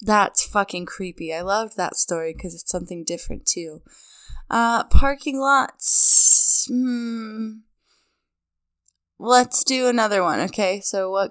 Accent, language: American, English